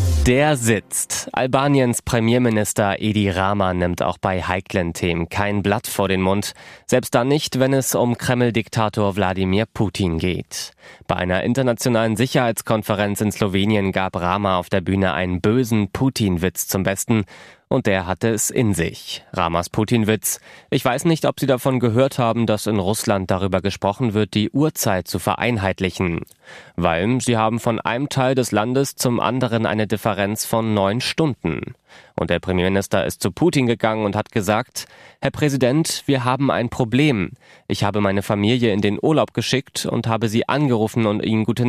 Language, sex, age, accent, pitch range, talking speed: German, male, 20-39, German, 100-125 Hz, 165 wpm